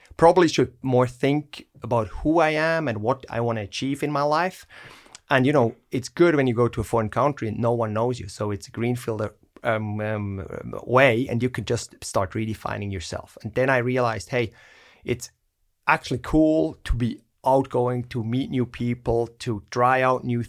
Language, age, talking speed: English, 30-49, 195 wpm